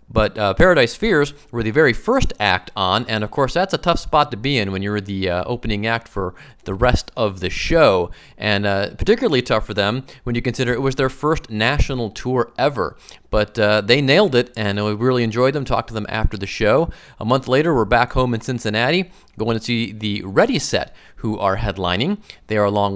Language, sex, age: English, male, 30-49